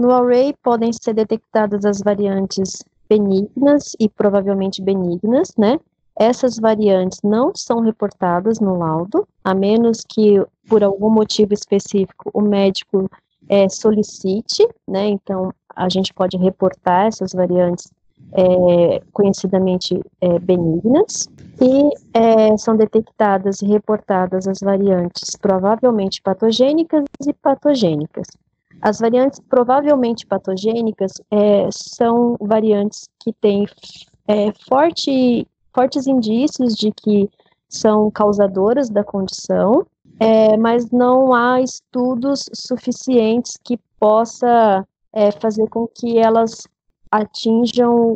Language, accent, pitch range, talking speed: Portuguese, Brazilian, 195-230 Hz, 105 wpm